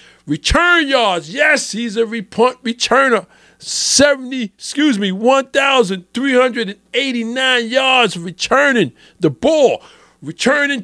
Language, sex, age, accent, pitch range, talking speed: English, male, 50-69, American, 190-280 Hz, 115 wpm